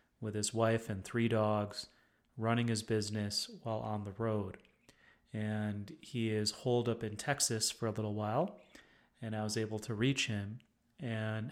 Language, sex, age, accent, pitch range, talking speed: English, male, 30-49, American, 105-120 Hz, 165 wpm